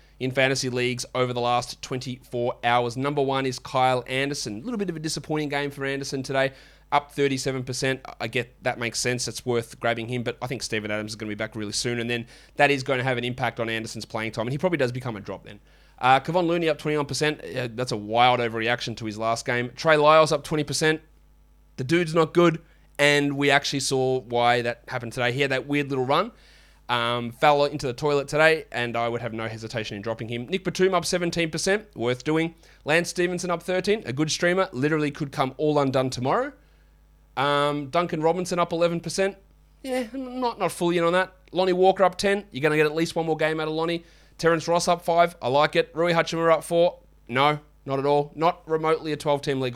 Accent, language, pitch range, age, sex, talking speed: Australian, English, 120-165 Hz, 20-39, male, 220 wpm